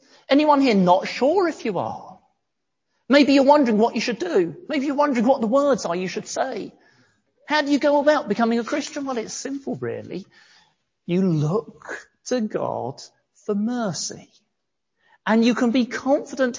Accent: British